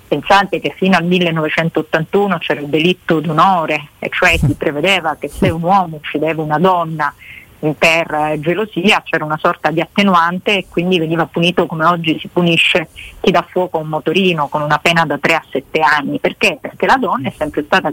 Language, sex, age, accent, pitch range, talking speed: Italian, female, 40-59, native, 160-200 Hz, 185 wpm